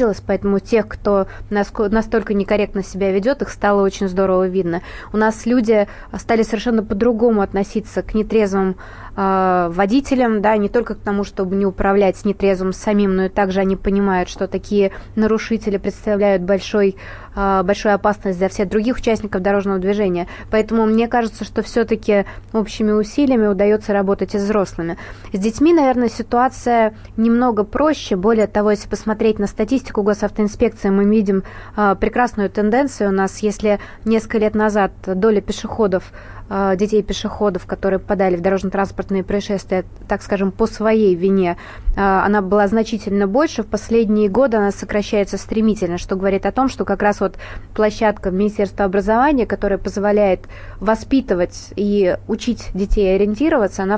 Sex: female